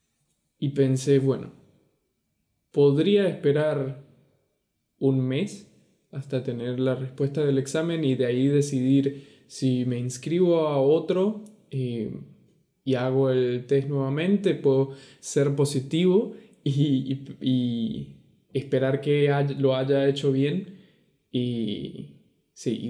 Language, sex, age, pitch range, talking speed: Spanish, male, 20-39, 130-160 Hz, 105 wpm